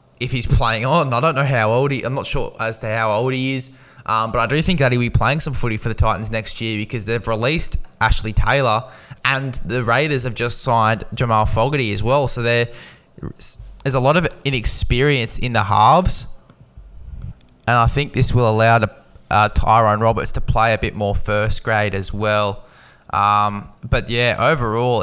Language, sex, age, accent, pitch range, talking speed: English, male, 10-29, Australian, 105-125 Hz, 195 wpm